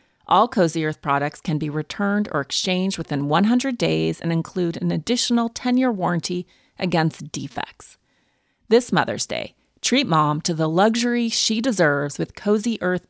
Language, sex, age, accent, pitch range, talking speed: English, female, 30-49, American, 155-200 Hz, 150 wpm